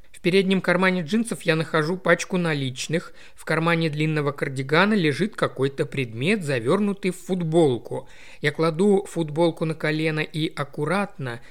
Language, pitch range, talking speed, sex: Russian, 145-185 Hz, 130 wpm, male